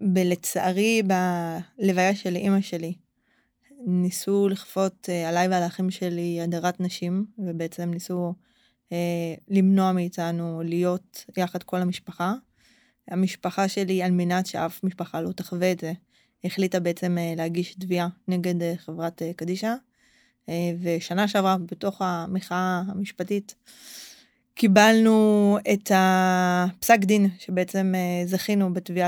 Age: 20-39